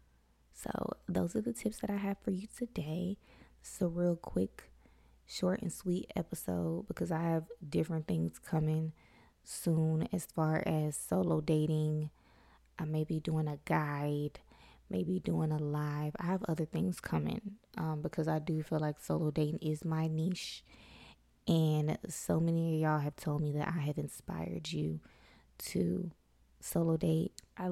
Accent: American